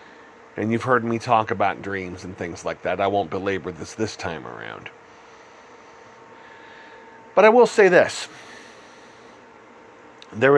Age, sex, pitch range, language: 40-59, male, 95-120 Hz, English